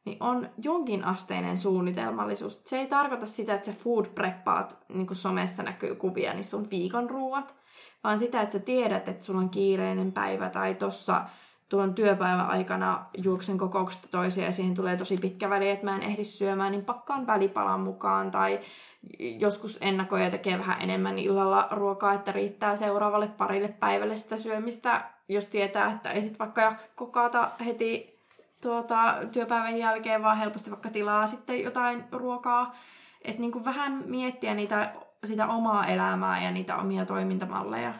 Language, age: Finnish, 20-39